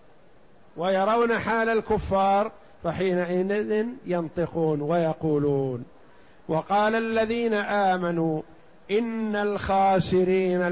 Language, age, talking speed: Arabic, 50-69, 60 wpm